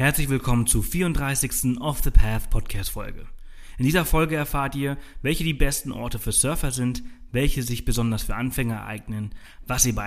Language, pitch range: German, 105-125 Hz